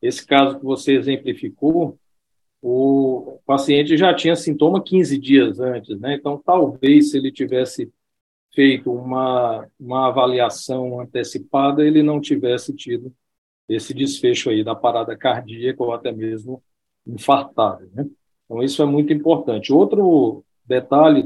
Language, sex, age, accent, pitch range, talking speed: English, male, 50-69, Brazilian, 125-155 Hz, 130 wpm